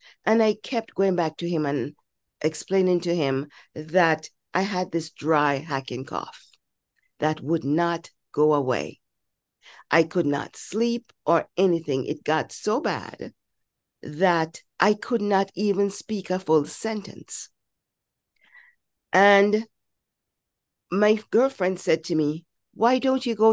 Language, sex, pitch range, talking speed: English, female, 160-230 Hz, 135 wpm